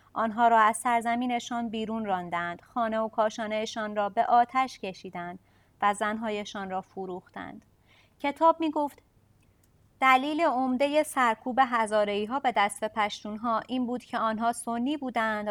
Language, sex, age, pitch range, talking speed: Persian, female, 30-49, 205-270 Hz, 140 wpm